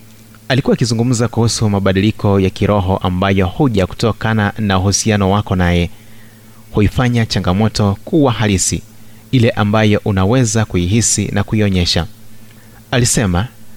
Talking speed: 105 wpm